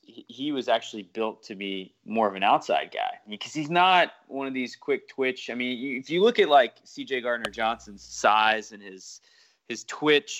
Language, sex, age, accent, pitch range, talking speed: English, male, 20-39, American, 110-155 Hz, 195 wpm